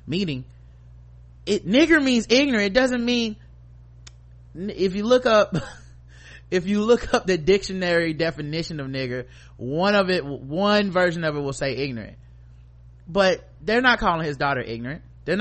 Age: 20-39